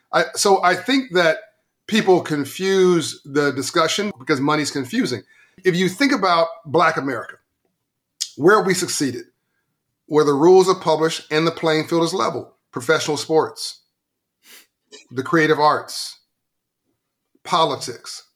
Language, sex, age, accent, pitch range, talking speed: English, male, 40-59, American, 135-160 Hz, 120 wpm